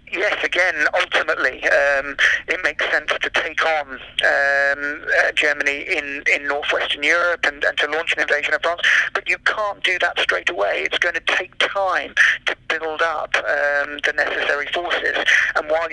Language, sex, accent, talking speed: English, male, British, 175 wpm